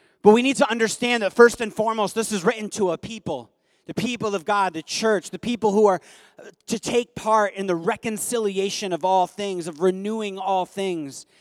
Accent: American